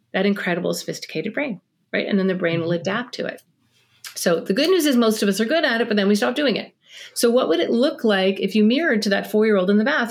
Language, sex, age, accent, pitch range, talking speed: English, female, 40-59, American, 170-235 Hz, 275 wpm